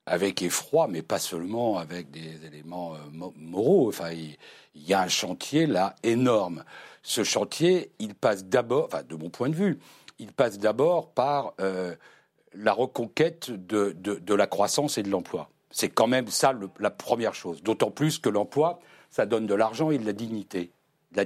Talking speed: 180 wpm